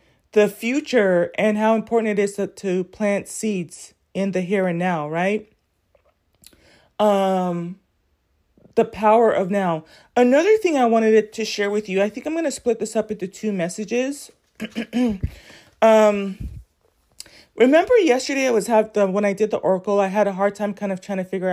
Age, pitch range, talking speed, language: 30-49, 185-225 Hz, 175 wpm, English